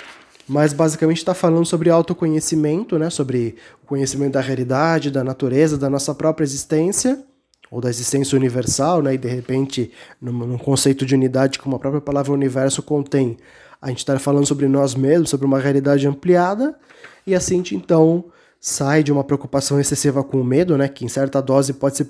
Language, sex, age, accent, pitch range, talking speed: Portuguese, male, 20-39, Brazilian, 135-155 Hz, 180 wpm